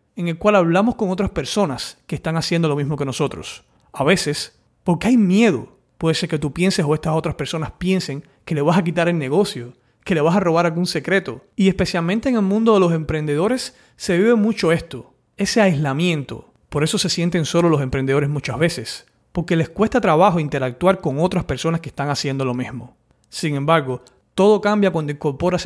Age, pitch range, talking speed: 30-49, 140-185 Hz, 200 wpm